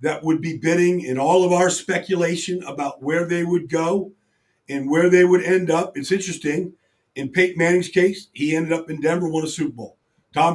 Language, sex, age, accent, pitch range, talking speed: English, male, 50-69, American, 155-190 Hz, 205 wpm